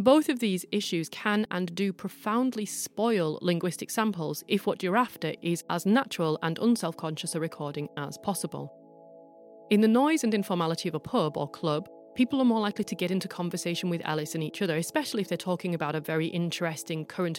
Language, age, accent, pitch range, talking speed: English, 30-49, British, 155-195 Hz, 195 wpm